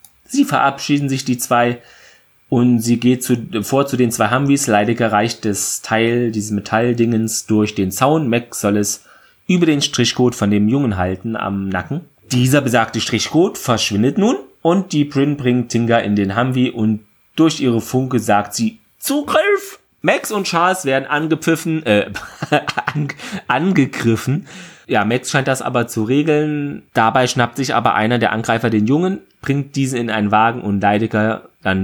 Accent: German